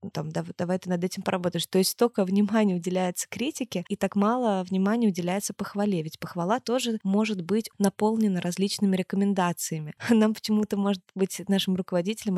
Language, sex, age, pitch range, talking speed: Russian, female, 20-39, 175-200 Hz, 155 wpm